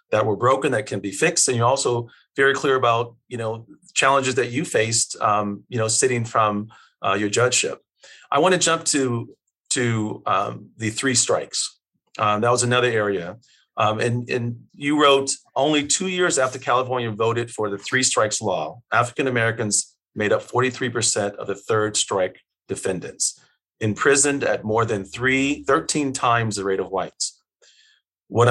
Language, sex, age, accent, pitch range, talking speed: English, male, 40-59, American, 110-135 Hz, 165 wpm